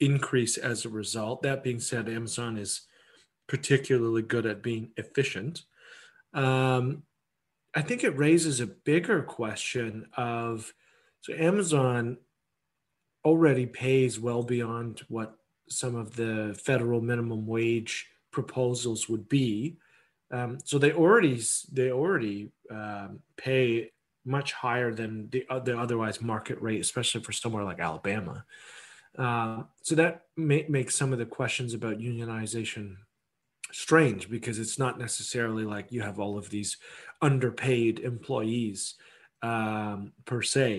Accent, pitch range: American, 110-135 Hz